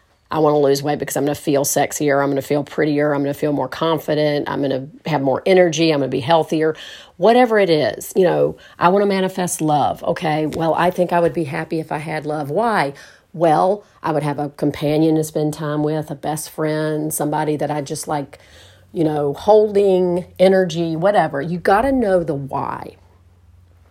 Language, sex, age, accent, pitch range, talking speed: English, female, 40-59, American, 145-185 Hz, 215 wpm